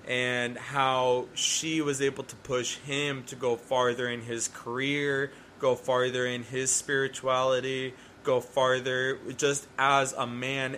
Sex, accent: male, American